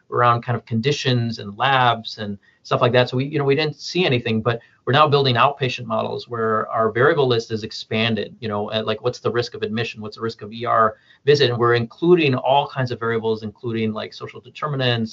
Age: 30-49